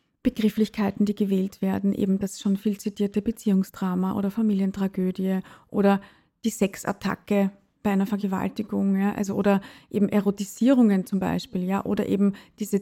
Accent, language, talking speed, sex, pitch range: German, German, 135 wpm, female, 195-215 Hz